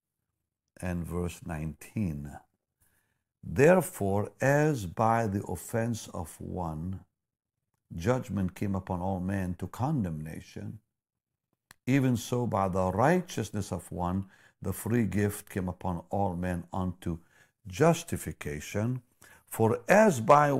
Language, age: English, 50-69